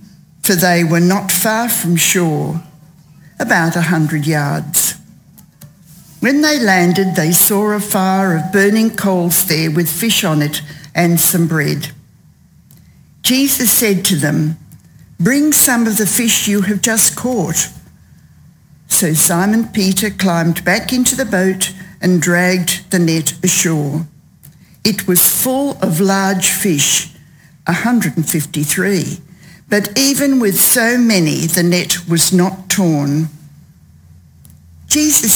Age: 60-79